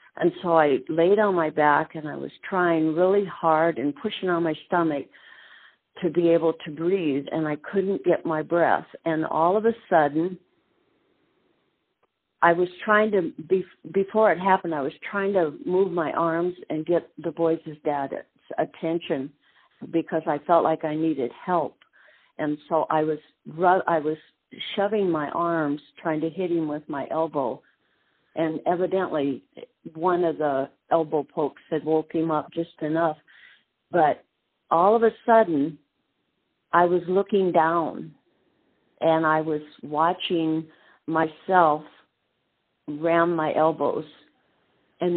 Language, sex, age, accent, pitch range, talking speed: English, female, 50-69, American, 155-180 Hz, 140 wpm